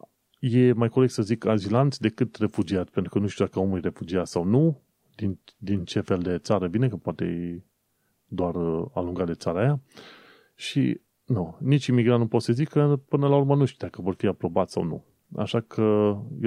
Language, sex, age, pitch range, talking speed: Romanian, male, 30-49, 95-125 Hz, 200 wpm